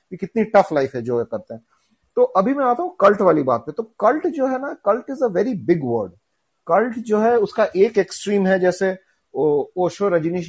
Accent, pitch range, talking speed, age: native, 155-215 Hz, 225 wpm, 40-59